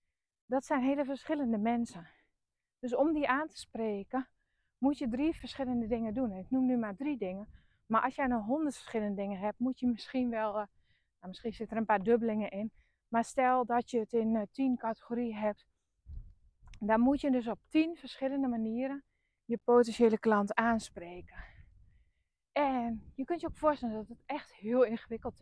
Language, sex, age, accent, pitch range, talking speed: Dutch, female, 20-39, Dutch, 210-260 Hz, 175 wpm